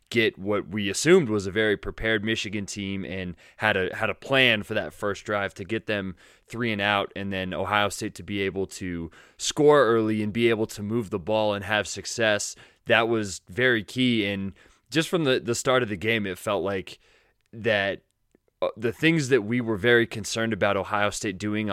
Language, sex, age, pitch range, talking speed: English, male, 20-39, 100-120 Hz, 205 wpm